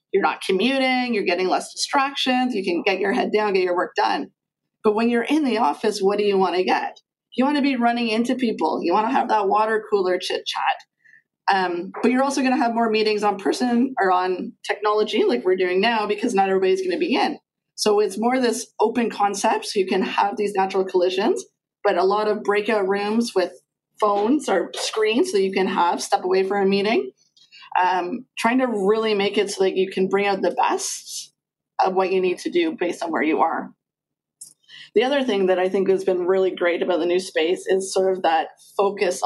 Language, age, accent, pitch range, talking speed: English, 30-49, American, 190-250 Hz, 225 wpm